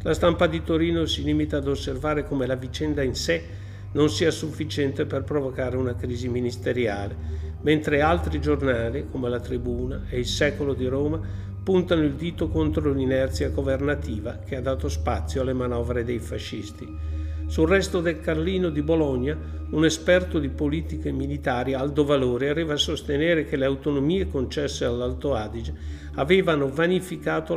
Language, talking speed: Italian, 150 wpm